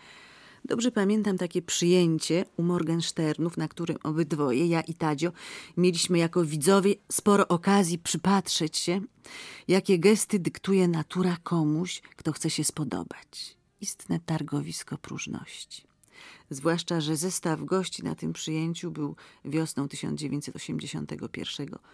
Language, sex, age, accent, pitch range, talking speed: Polish, female, 40-59, native, 155-180 Hz, 110 wpm